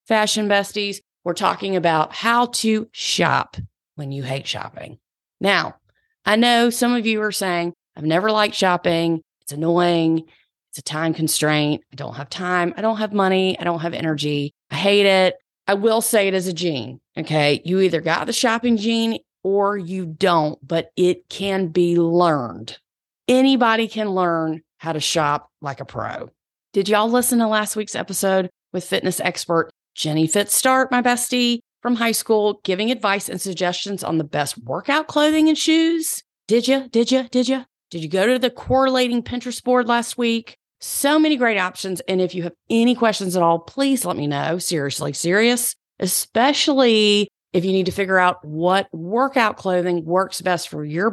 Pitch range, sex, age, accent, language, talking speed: 165-230 Hz, female, 30-49, American, English, 180 wpm